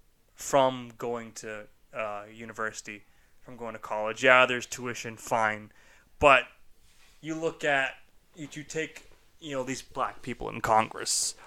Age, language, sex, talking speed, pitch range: 20-39, English, male, 135 wpm, 115-145 Hz